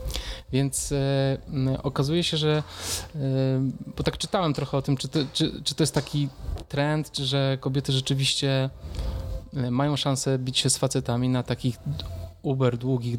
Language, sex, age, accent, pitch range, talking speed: Polish, male, 20-39, native, 120-140 Hz, 155 wpm